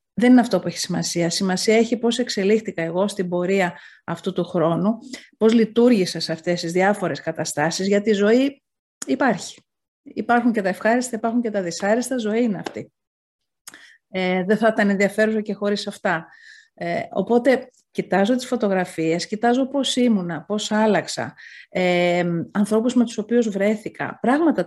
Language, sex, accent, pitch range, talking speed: Greek, female, native, 180-225 Hz, 155 wpm